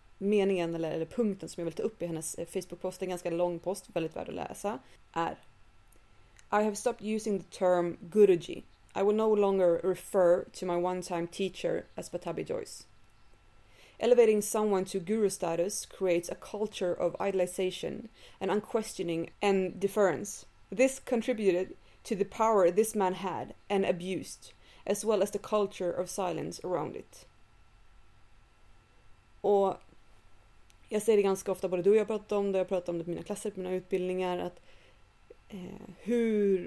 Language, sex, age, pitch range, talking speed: English, female, 30-49, 170-205 Hz, 160 wpm